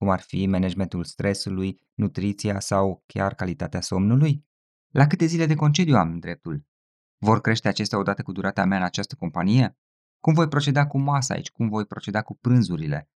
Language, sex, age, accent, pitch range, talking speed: Romanian, male, 20-39, native, 95-130 Hz, 175 wpm